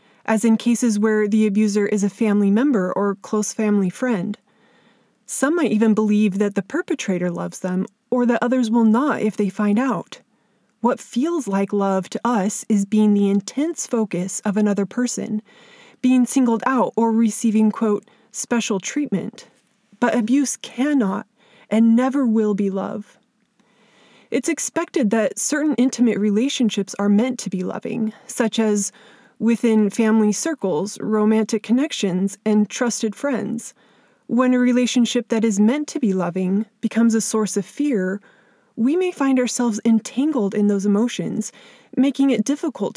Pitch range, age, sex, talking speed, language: 210-245 Hz, 20-39, female, 150 wpm, English